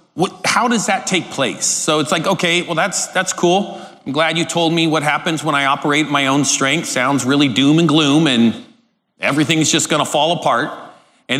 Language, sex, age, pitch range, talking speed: English, male, 40-59, 145-185 Hz, 210 wpm